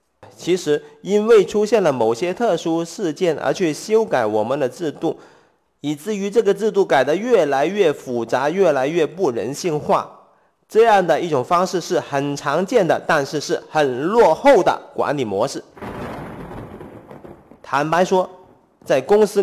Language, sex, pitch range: Chinese, male, 140-220 Hz